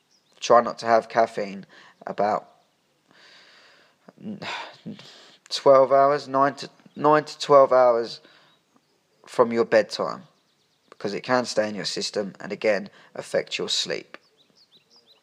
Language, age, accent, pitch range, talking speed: English, 20-39, British, 110-130 Hz, 115 wpm